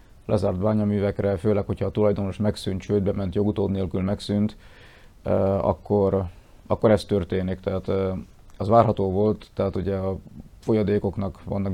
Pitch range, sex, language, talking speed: 100-110 Hz, male, Hungarian, 130 wpm